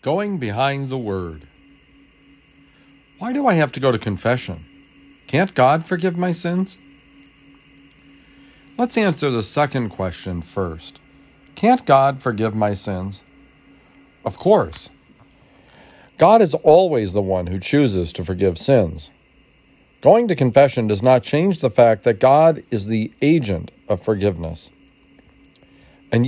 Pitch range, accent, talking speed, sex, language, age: 110-145 Hz, American, 130 wpm, male, English, 50-69